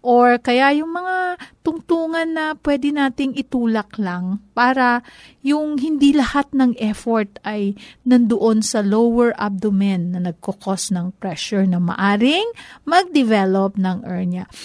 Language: Filipino